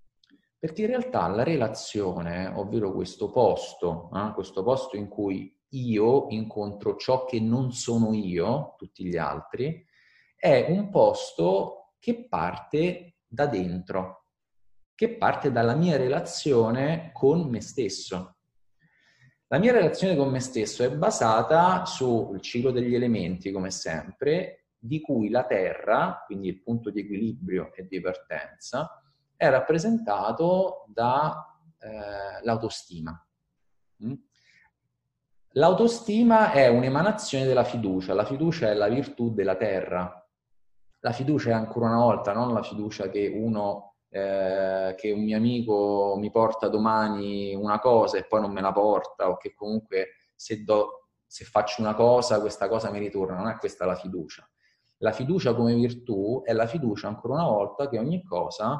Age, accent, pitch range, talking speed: 30-49, native, 100-140 Hz, 140 wpm